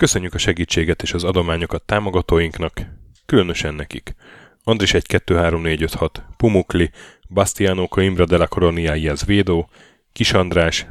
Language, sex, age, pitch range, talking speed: Hungarian, male, 10-29, 85-100 Hz, 125 wpm